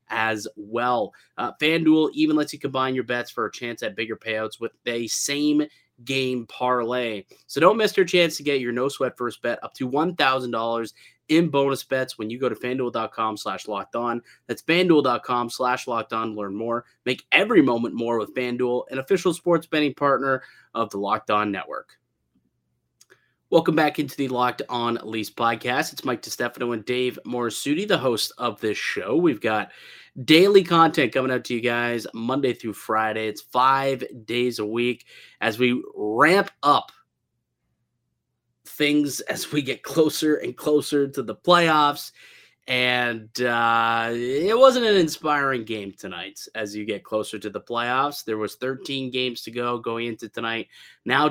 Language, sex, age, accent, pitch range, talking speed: English, male, 30-49, American, 115-145 Hz, 170 wpm